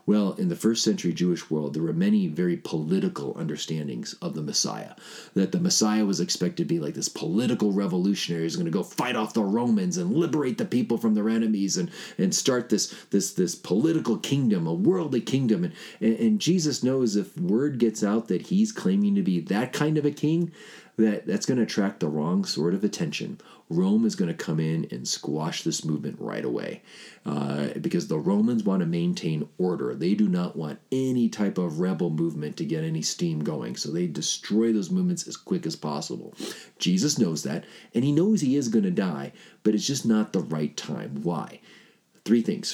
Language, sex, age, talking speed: English, male, 40-59, 205 wpm